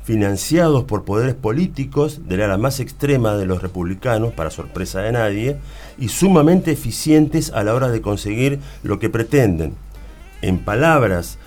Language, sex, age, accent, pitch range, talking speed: Spanish, male, 40-59, Argentinian, 105-145 Hz, 150 wpm